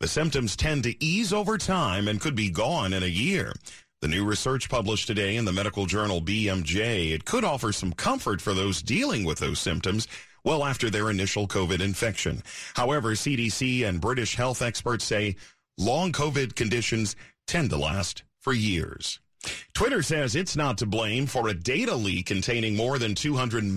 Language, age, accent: English, 40-59, American